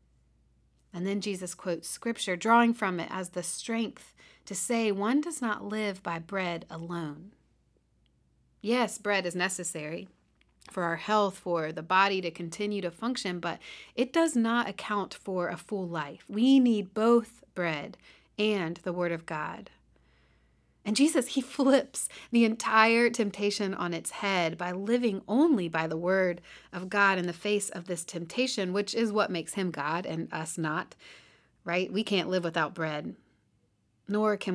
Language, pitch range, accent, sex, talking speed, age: English, 165-210 Hz, American, female, 160 wpm, 40-59